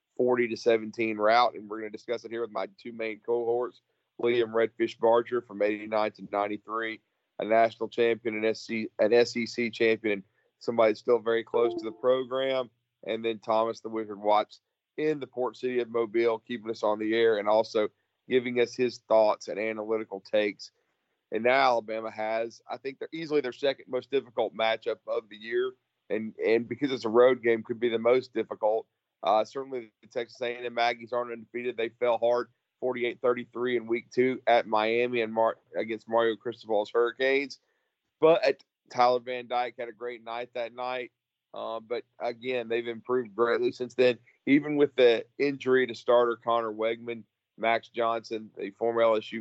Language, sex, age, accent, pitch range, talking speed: English, male, 40-59, American, 110-125 Hz, 180 wpm